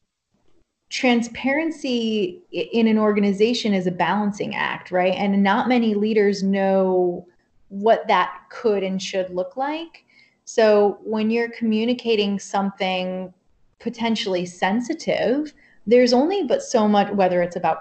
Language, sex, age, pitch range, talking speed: English, female, 30-49, 185-230 Hz, 120 wpm